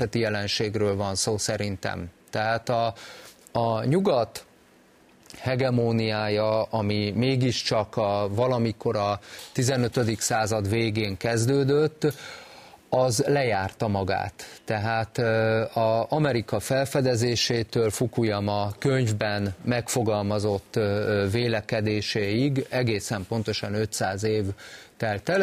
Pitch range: 105-125 Hz